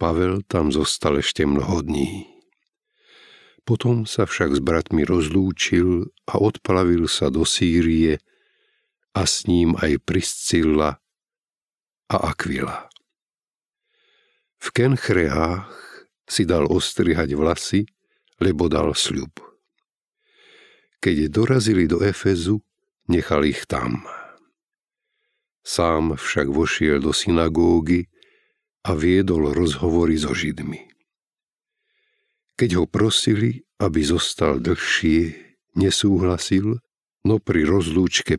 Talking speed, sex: 95 wpm, male